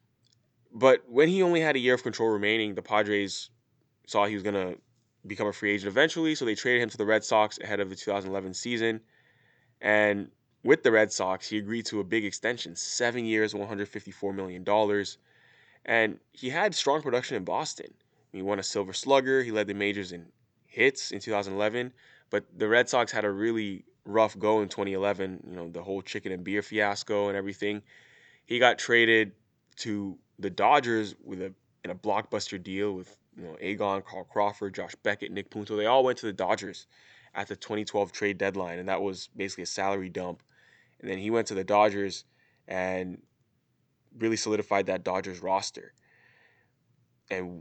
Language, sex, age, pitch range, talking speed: English, male, 20-39, 95-110 Hz, 180 wpm